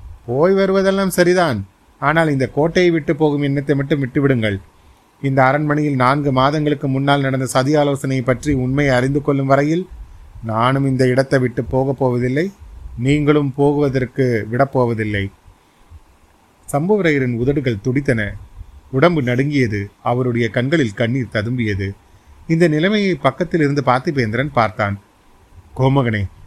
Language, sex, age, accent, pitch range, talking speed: Tamil, male, 30-49, native, 110-145 Hz, 110 wpm